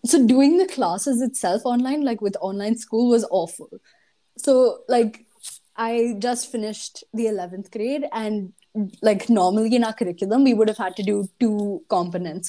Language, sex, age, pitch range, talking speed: English, female, 20-39, 195-255 Hz, 165 wpm